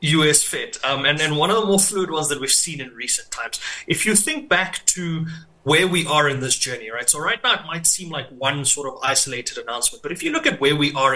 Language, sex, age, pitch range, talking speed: English, male, 30-49, 145-190 Hz, 265 wpm